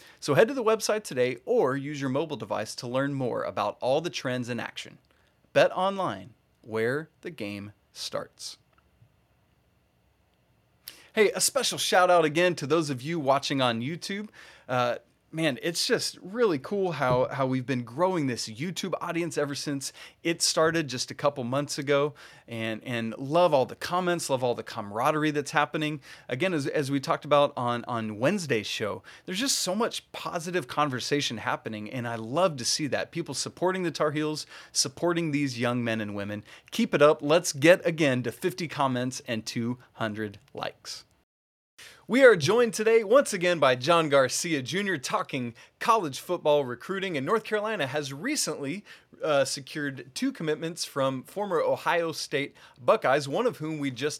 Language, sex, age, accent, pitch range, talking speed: English, male, 30-49, American, 130-175 Hz, 170 wpm